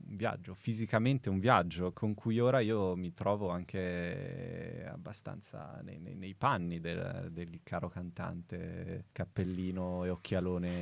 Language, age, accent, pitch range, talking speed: Italian, 20-39, native, 95-125 Hz, 130 wpm